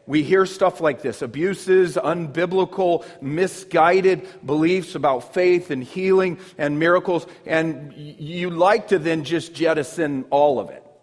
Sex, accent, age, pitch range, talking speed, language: male, American, 40-59, 160-195 Hz, 135 wpm, English